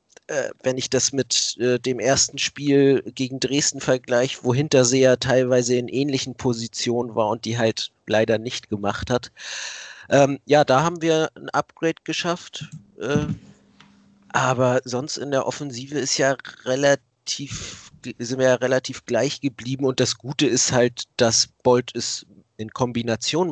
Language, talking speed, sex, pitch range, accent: German, 140 wpm, male, 115-135 Hz, German